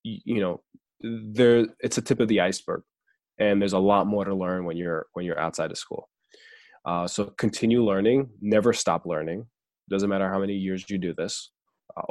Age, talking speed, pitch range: 20-39, 195 wpm, 95-130 Hz